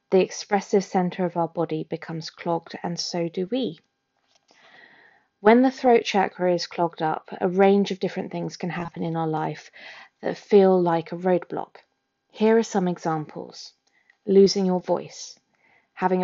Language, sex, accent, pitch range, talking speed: English, female, British, 170-205 Hz, 155 wpm